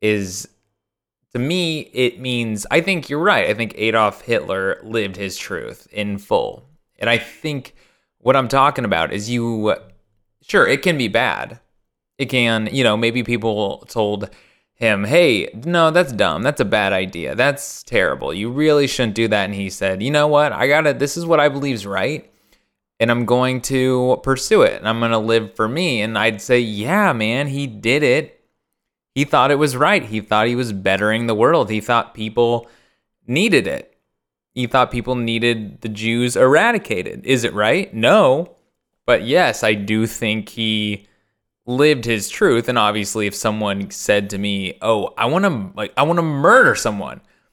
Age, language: 20-39, English